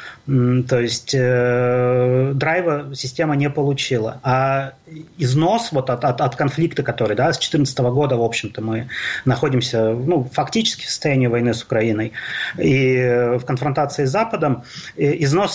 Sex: male